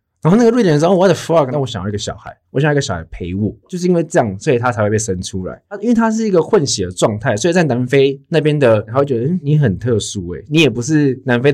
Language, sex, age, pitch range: Chinese, male, 20-39, 95-135 Hz